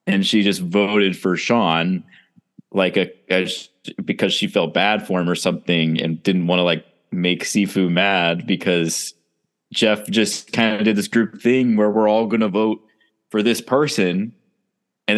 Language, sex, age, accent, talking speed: English, male, 20-39, American, 170 wpm